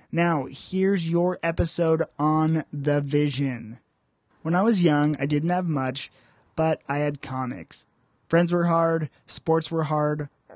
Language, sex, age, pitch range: English, male, 20-39, 135-170 Hz